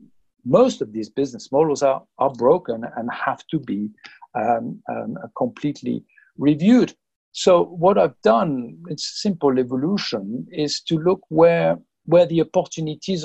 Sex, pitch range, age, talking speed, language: male, 120-160 Hz, 50-69, 140 wpm, English